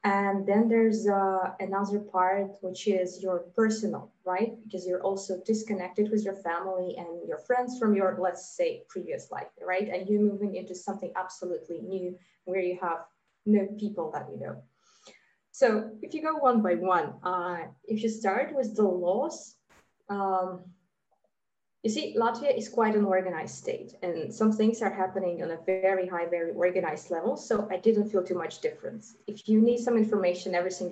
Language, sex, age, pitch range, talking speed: English, female, 20-39, 185-220 Hz, 175 wpm